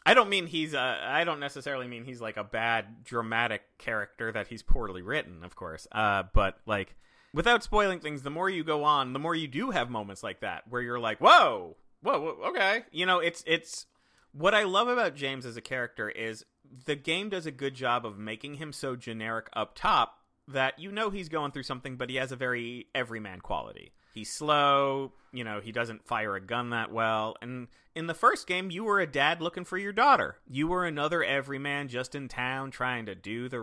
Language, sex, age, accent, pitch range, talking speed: English, male, 30-49, American, 120-170 Hz, 215 wpm